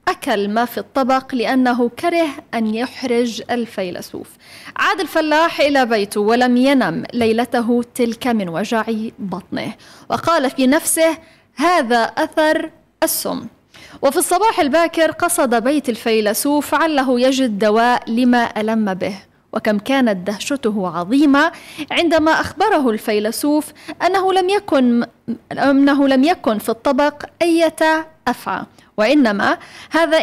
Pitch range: 230-310 Hz